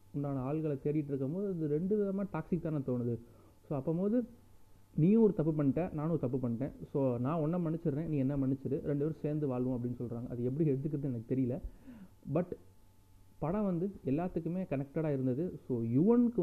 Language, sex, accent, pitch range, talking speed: Tamil, male, native, 125-160 Hz, 170 wpm